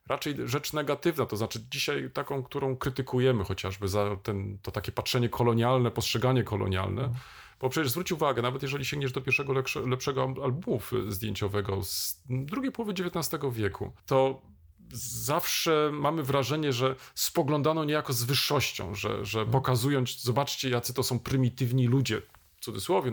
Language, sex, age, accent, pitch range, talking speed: Polish, male, 40-59, native, 120-150 Hz, 145 wpm